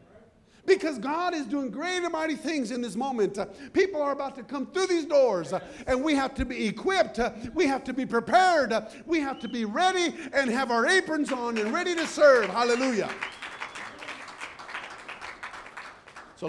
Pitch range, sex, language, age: 195-265 Hz, male, English, 50-69